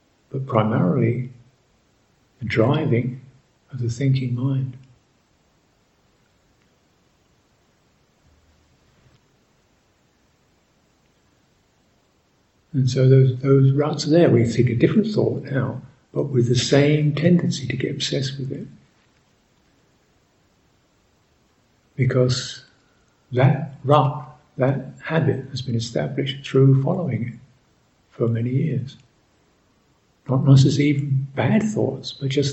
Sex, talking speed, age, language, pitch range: male, 95 wpm, 60-79, English, 125-145 Hz